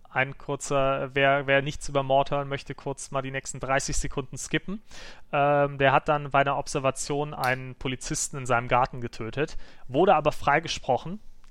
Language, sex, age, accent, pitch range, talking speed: German, male, 30-49, German, 120-140 Hz, 160 wpm